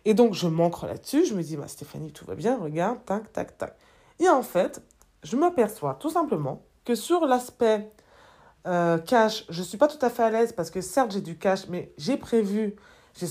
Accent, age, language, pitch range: French, 20-39, French, 165-230 Hz